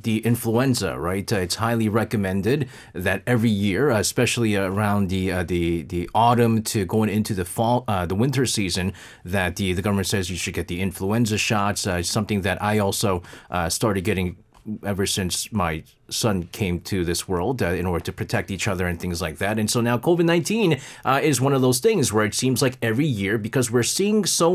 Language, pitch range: English, 95-125 Hz